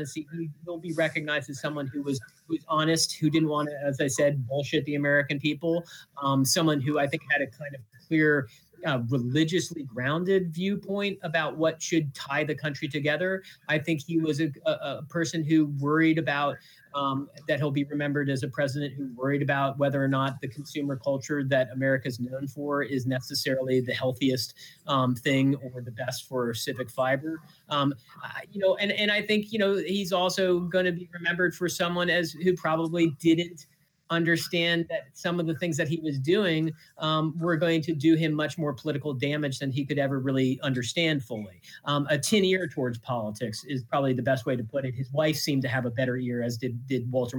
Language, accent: English, American